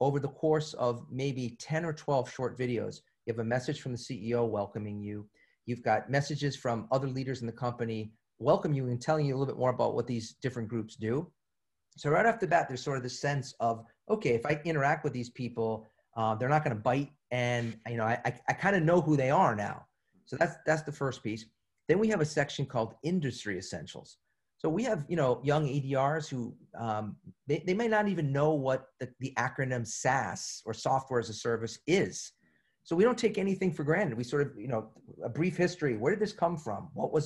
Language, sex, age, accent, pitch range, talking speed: English, male, 40-59, American, 120-155 Hz, 225 wpm